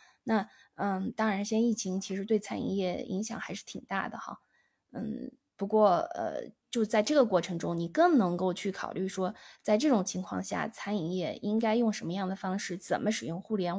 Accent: native